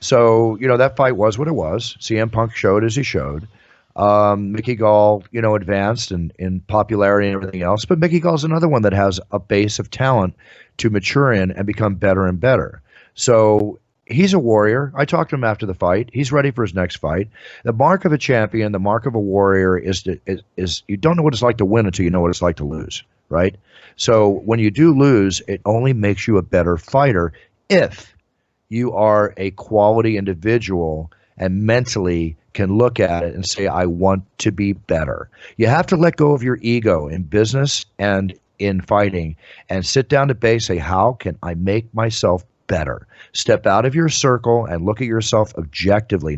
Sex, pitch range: male, 95-120 Hz